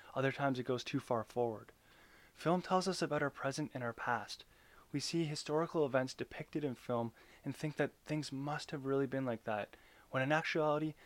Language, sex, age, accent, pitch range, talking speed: English, male, 20-39, American, 120-155 Hz, 195 wpm